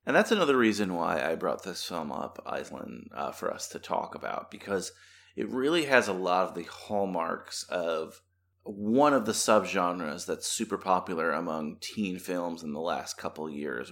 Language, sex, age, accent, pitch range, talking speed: English, male, 30-49, American, 90-120 Hz, 185 wpm